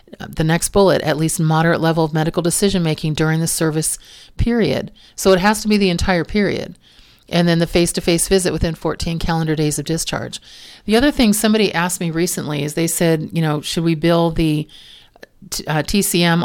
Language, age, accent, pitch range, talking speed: English, 40-59, American, 160-185 Hz, 185 wpm